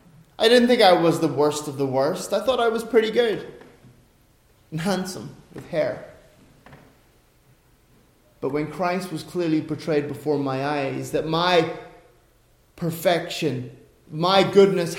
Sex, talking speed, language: male, 135 wpm, English